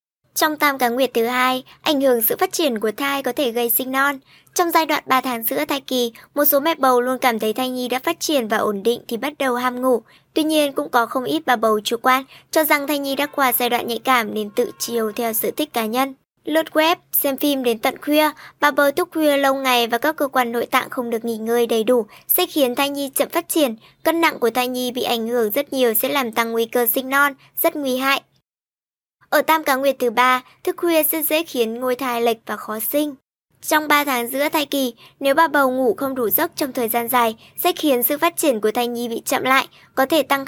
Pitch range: 240-295 Hz